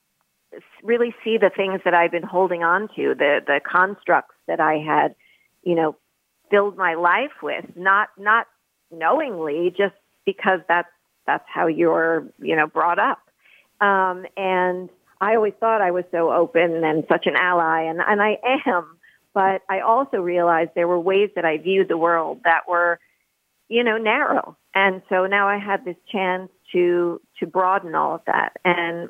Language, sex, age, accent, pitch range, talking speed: English, female, 50-69, American, 175-205 Hz, 170 wpm